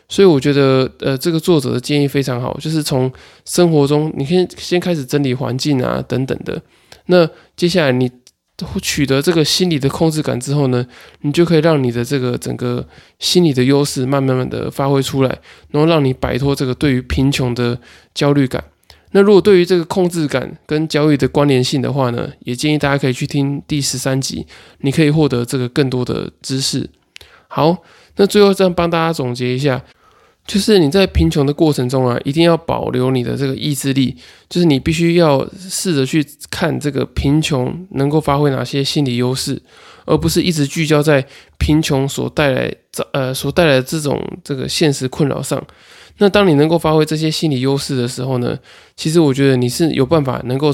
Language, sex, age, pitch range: Chinese, male, 20-39, 130-160 Hz